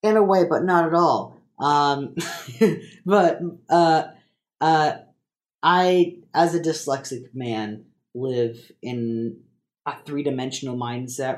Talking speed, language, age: 110 wpm, English, 30-49